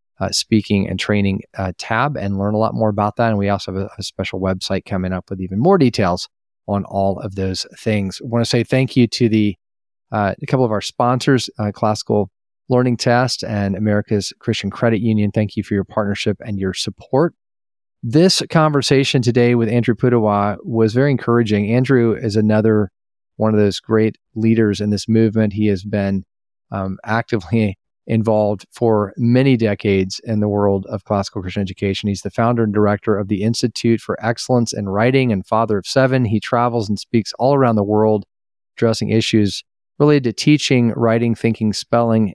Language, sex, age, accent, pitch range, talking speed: English, male, 40-59, American, 100-115 Hz, 185 wpm